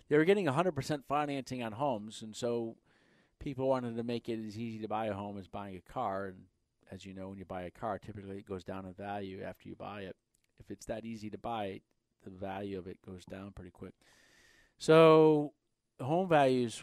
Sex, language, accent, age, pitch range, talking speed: male, English, American, 40-59, 100-120 Hz, 215 wpm